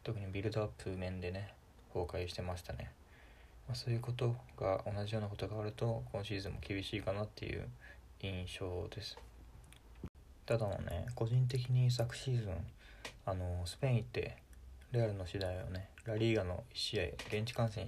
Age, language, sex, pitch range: 20-39, Japanese, male, 95-115 Hz